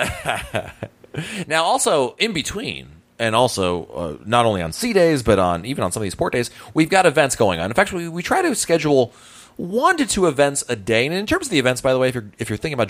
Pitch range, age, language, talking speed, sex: 100-150 Hz, 30-49, English, 250 wpm, male